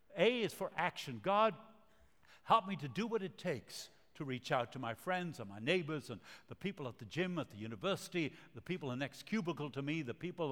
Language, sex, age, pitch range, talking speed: English, male, 60-79, 140-195 Hz, 230 wpm